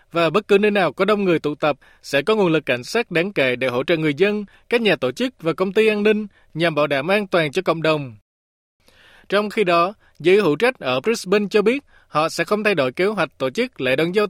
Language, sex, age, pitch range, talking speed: Vietnamese, male, 20-39, 155-210 Hz, 260 wpm